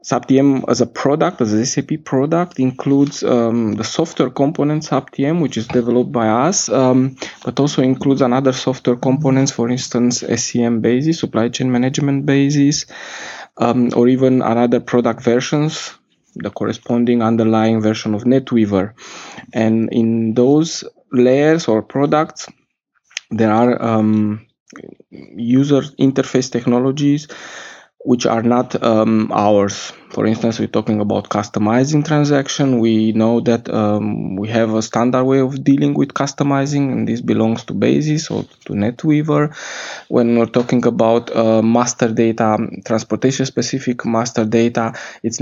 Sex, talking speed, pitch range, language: male, 135 wpm, 110-135 Hz, English